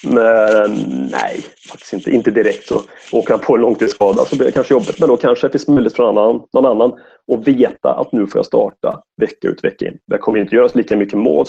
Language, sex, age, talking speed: English, male, 30-49, 230 wpm